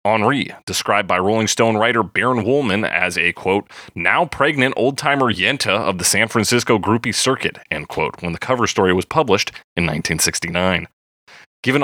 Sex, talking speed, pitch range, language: male, 155 wpm, 100-140 Hz, English